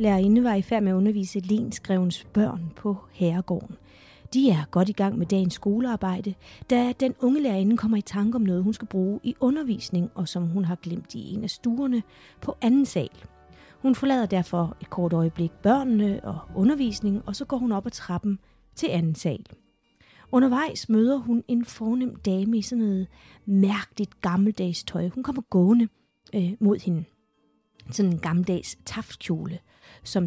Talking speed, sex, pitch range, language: 175 wpm, female, 180-235 Hz, Danish